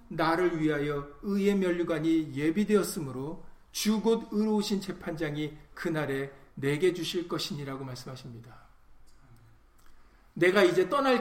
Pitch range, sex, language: 130-215 Hz, male, Korean